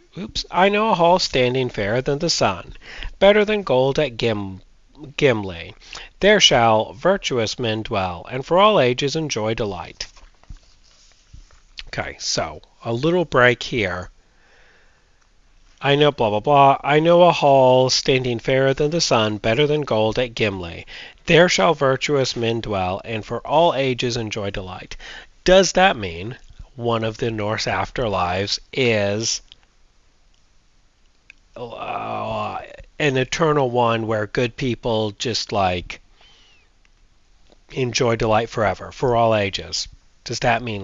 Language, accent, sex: English, American, male